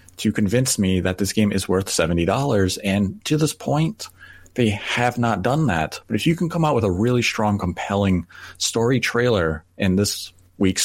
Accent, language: American, English